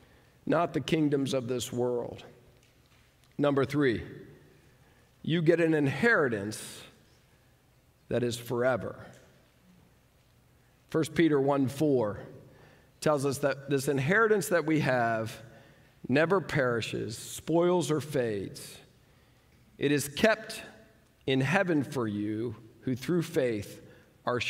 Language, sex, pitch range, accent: English, male, 120-170 Hz, American